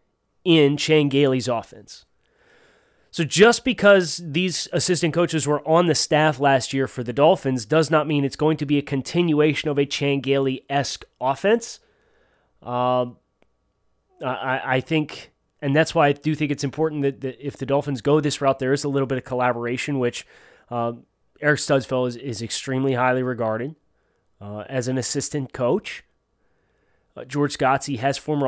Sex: male